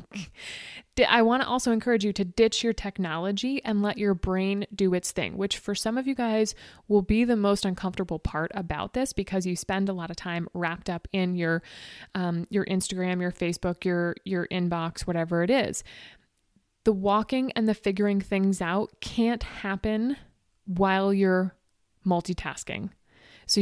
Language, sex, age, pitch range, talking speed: English, female, 20-39, 185-220 Hz, 170 wpm